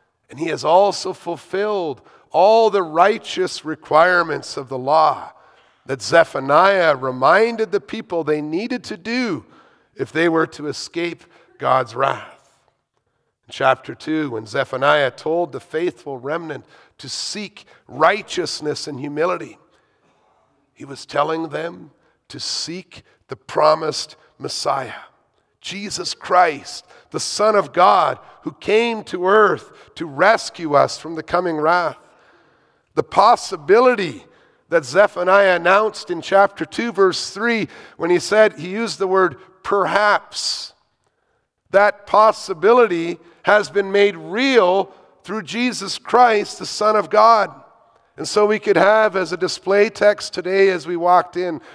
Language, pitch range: English, 165-215 Hz